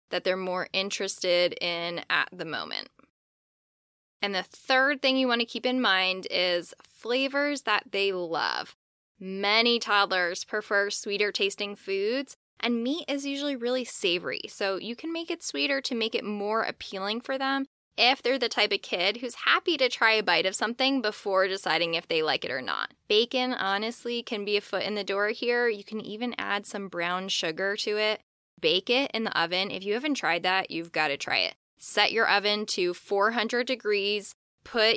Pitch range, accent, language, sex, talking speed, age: 185-240 Hz, American, English, female, 190 wpm, 10-29